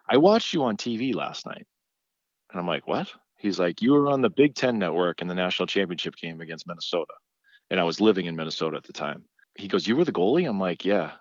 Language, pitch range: English, 85-110 Hz